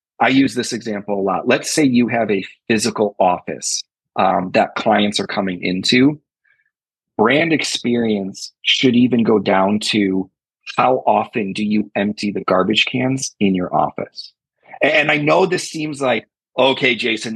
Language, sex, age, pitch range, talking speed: English, male, 30-49, 105-130 Hz, 155 wpm